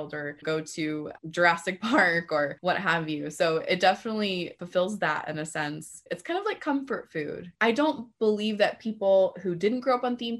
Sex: female